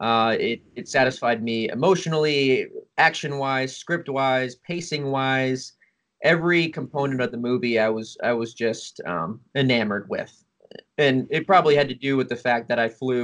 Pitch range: 115-140 Hz